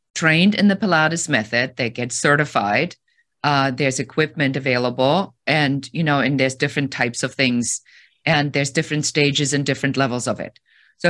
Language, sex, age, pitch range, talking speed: English, female, 50-69, 130-155 Hz, 170 wpm